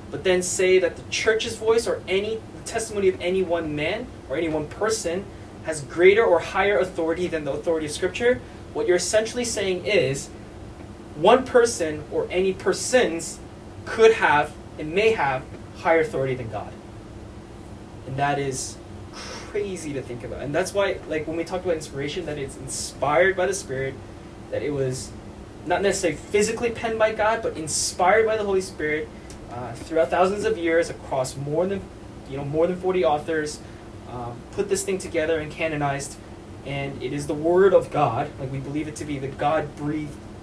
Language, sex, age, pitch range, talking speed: English, male, 20-39, 115-190 Hz, 180 wpm